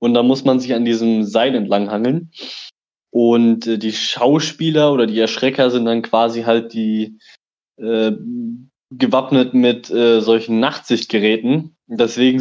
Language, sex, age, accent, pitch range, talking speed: German, male, 20-39, German, 120-145 Hz, 140 wpm